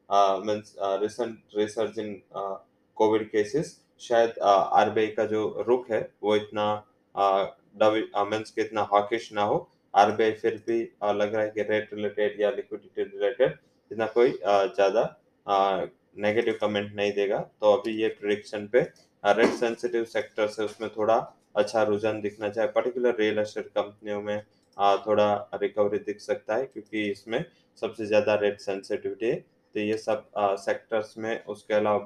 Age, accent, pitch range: 20-39, Indian, 100-110 Hz